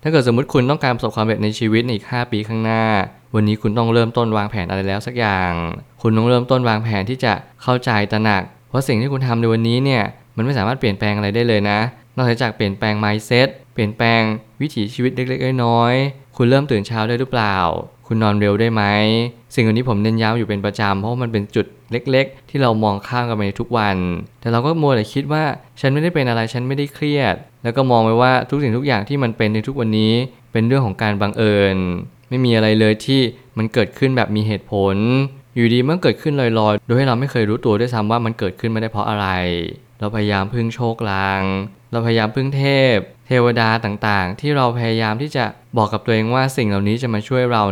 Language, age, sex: Thai, 20-39, male